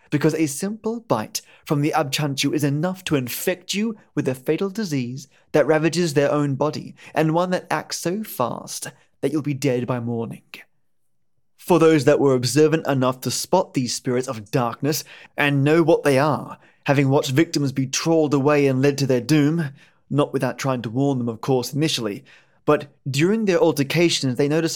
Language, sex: English, male